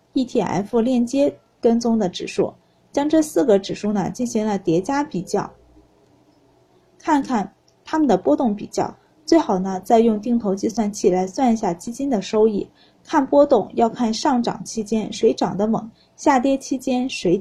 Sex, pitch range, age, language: female, 200-265 Hz, 20-39, Chinese